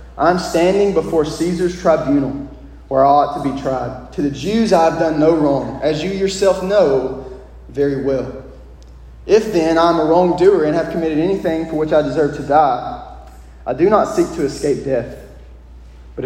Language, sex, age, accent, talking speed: English, male, 30-49, American, 175 wpm